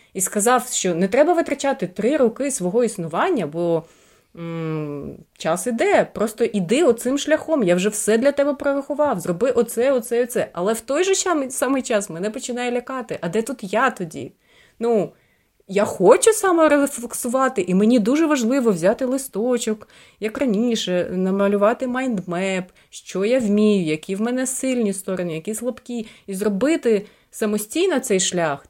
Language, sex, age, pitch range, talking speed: Ukrainian, female, 30-49, 190-255 Hz, 150 wpm